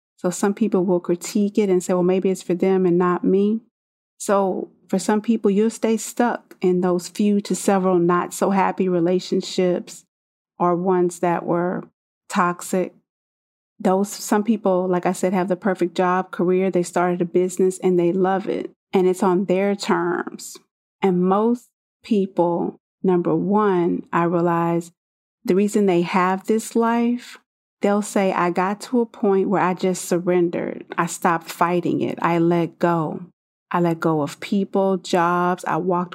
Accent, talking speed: American, 165 wpm